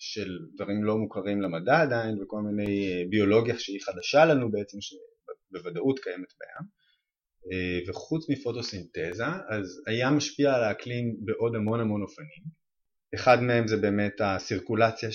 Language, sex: Hebrew, male